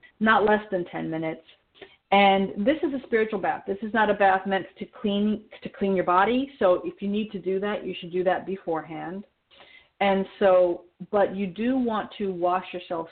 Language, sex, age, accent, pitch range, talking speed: English, female, 40-59, American, 170-205 Hz, 200 wpm